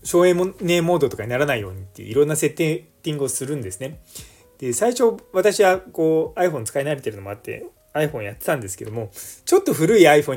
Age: 20-39